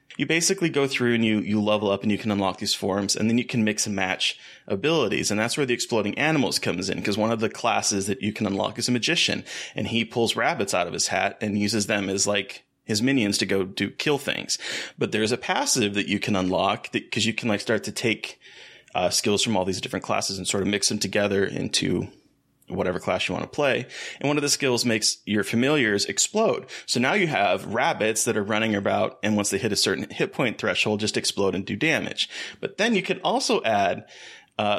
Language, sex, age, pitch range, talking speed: English, male, 30-49, 100-125 Hz, 240 wpm